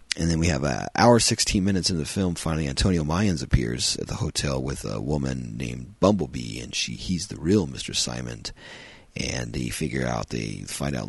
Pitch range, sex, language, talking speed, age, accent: 65-85 Hz, male, English, 200 wpm, 40-59, American